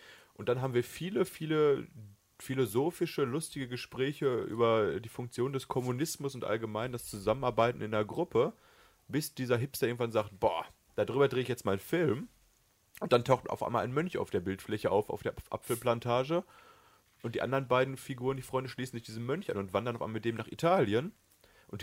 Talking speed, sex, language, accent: 190 wpm, male, German, German